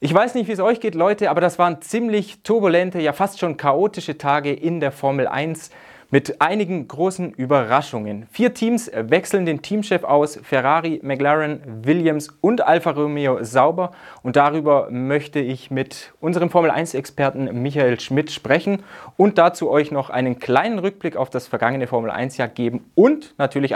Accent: German